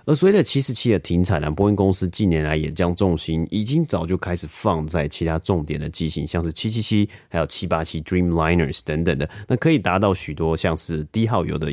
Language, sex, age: Chinese, male, 30-49